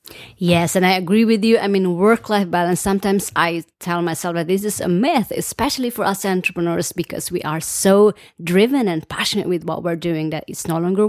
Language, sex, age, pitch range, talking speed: English, female, 30-49, 170-215 Hz, 205 wpm